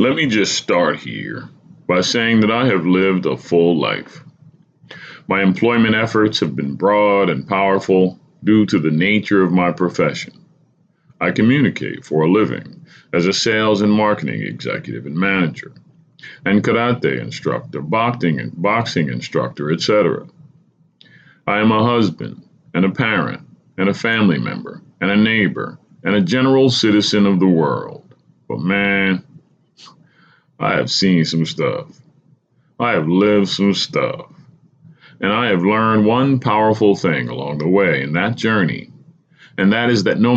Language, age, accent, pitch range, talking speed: English, 40-59, American, 100-130 Hz, 150 wpm